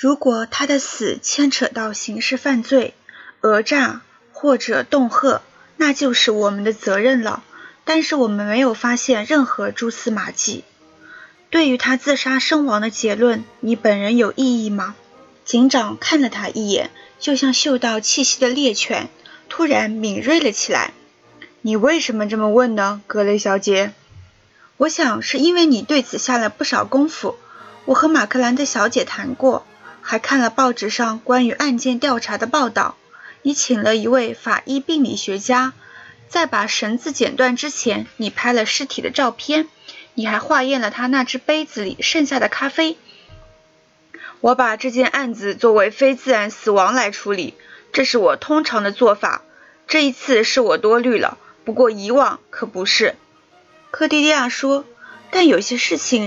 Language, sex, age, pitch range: Chinese, female, 20-39, 225-280 Hz